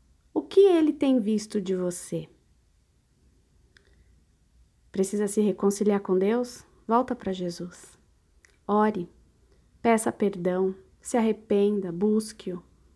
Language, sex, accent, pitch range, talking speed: Portuguese, female, Brazilian, 180-220 Hz, 95 wpm